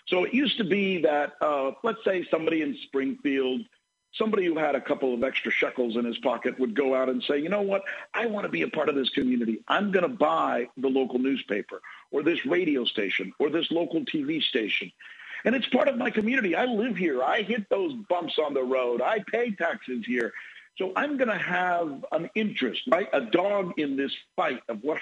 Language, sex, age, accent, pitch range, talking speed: English, male, 50-69, American, 150-230 Hz, 220 wpm